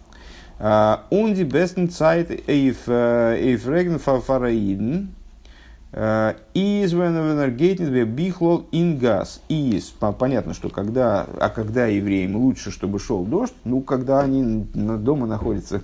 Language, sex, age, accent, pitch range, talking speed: Russian, male, 50-69, native, 105-160 Hz, 55 wpm